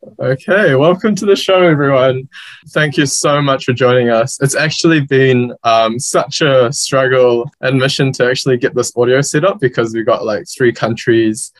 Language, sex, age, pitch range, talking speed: English, male, 20-39, 115-145 Hz, 180 wpm